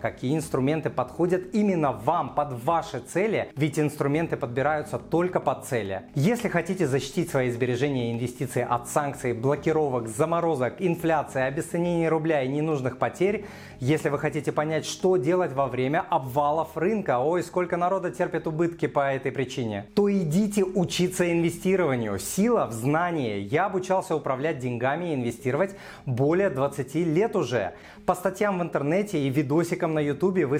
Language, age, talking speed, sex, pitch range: Russian, 30-49, 145 wpm, male, 130-175 Hz